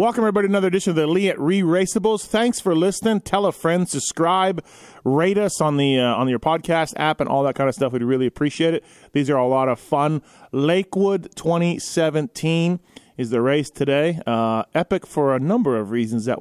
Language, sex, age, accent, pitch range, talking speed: English, male, 30-49, American, 130-165 Hz, 205 wpm